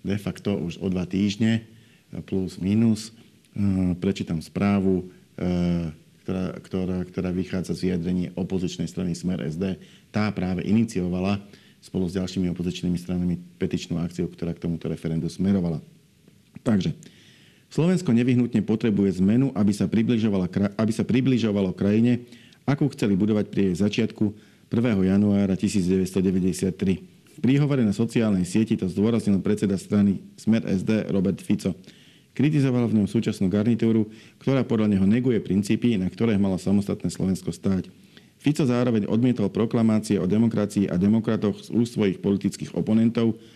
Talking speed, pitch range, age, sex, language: 130 wpm, 95-115 Hz, 50-69, male, Slovak